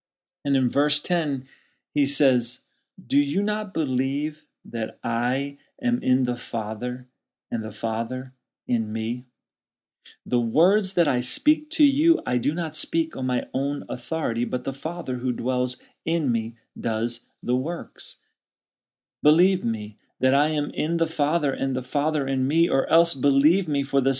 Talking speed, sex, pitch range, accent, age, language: 160 wpm, male, 125-160 Hz, American, 40-59, English